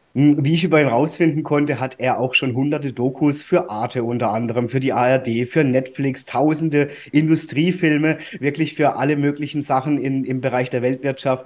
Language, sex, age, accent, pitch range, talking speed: German, male, 30-49, German, 130-150 Hz, 170 wpm